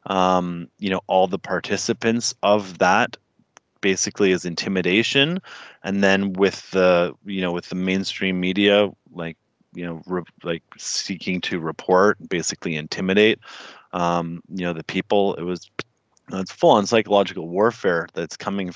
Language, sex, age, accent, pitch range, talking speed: English, male, 30-49, American, 90-115 Hz, 140 wpm